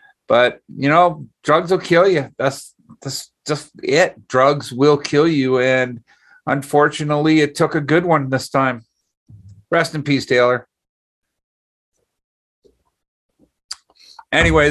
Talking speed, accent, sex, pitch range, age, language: 120 wpm, American, male, 125-155 Hz, 50-69, English